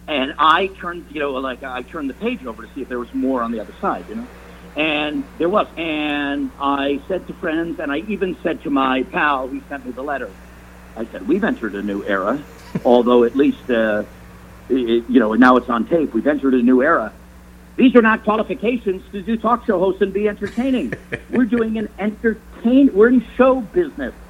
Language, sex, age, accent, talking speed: English, male, 50-69, American, 210 wpm